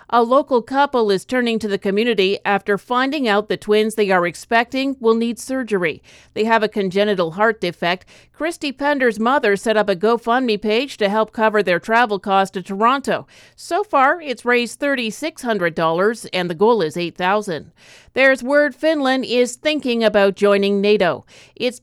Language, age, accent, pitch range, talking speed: English, 50-69, American, 195-245 Hz, 165 wpm